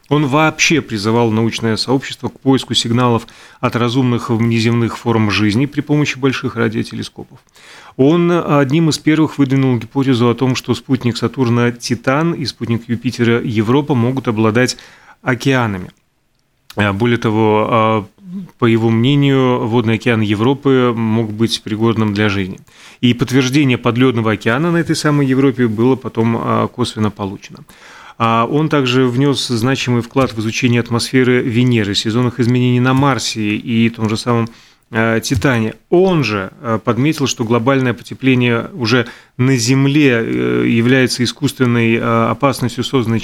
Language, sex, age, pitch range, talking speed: Russian, male, 30-49, 115-135 Hz, 130 wpm